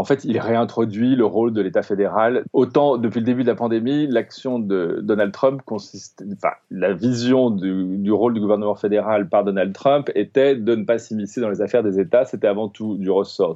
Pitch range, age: 100-130 Hz, 30-49